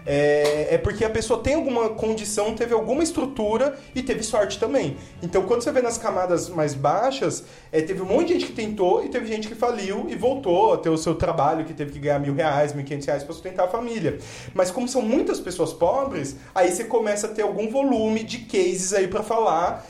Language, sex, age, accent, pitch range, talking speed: Portuguese, male, 20-39, Brazilian, 150-210 Hz, 225 wpm